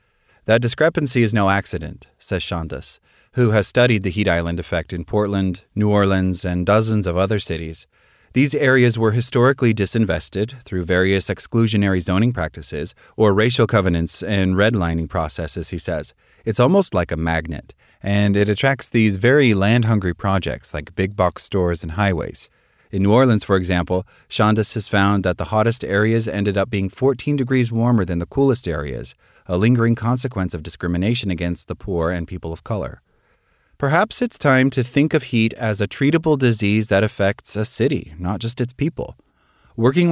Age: 30-49